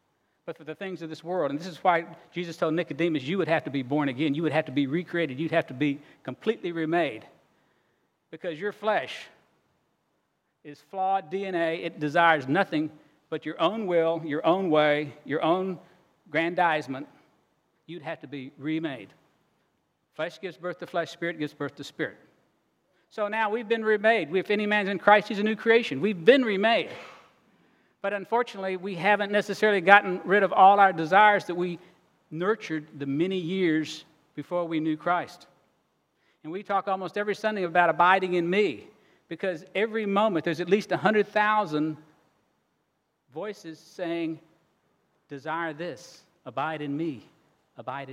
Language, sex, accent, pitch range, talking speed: English, male, American, 155-200 Hz, 160 wpm